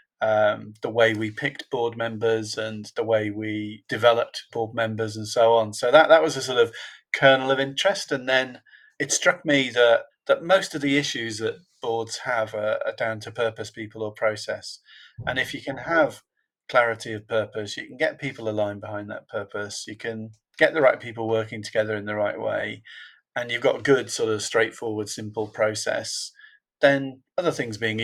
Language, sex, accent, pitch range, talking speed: English, male, British, 110-125 Hz, 195 wpm